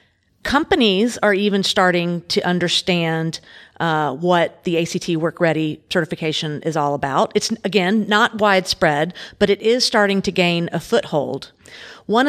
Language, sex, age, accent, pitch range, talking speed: English, female, 40-59, American, 165-205 Hz, 140 wpm